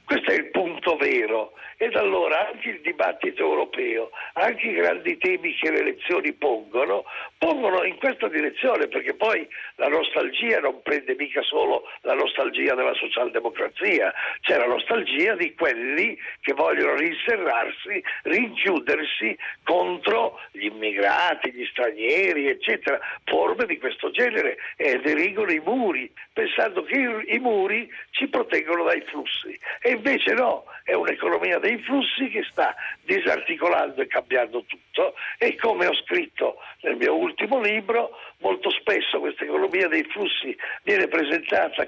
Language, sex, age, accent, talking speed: Italian, male, 60-79, native, 140 wpm